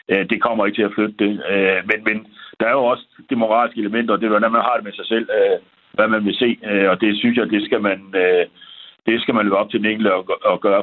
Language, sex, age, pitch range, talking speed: Danish, male, 60-79, 100-115 Hz, 255 wpm